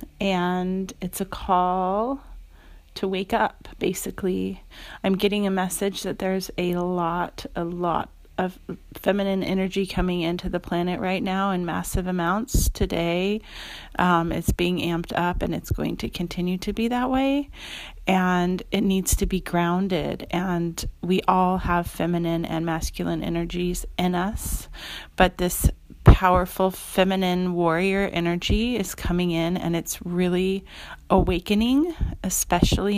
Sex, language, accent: female, English, American